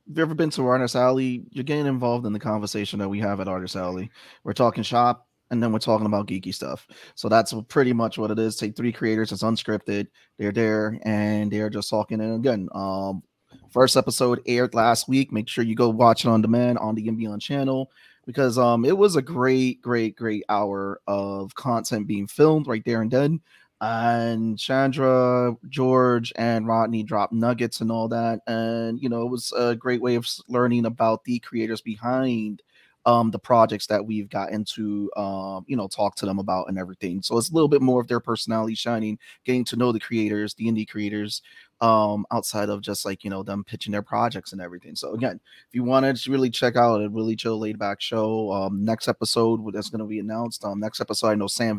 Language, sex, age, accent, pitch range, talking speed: English, male, 30-49, American, 105-120 Hz, 210 wpm